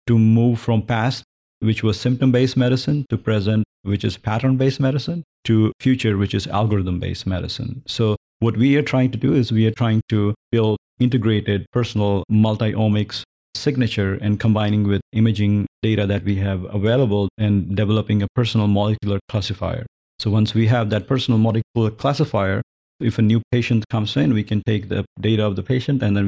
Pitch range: 105-120 Hz